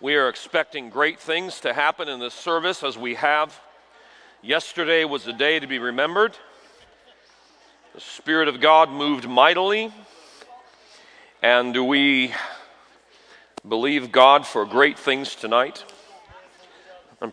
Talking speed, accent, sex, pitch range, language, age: 120 wpm, American, male, 120-155 Hz, English, 40-59